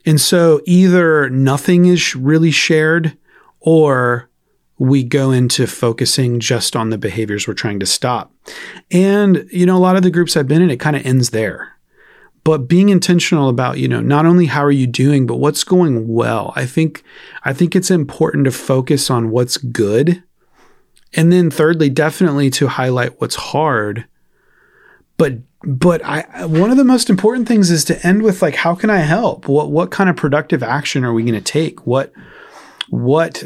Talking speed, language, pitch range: 185 wpm, English, 115-160 Hz